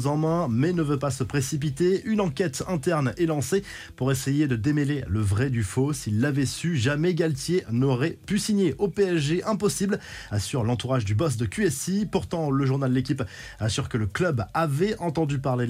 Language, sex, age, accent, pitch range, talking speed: French, male, 20-39, French, 125-160 Hz, 190 wpm